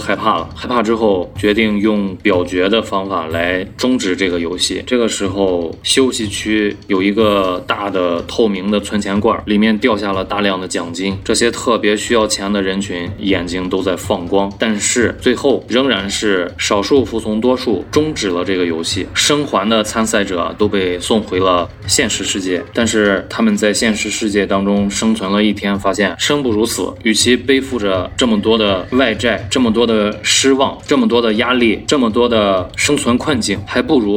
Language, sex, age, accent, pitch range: Chinese, male, 20-39, native, 95-115 Hz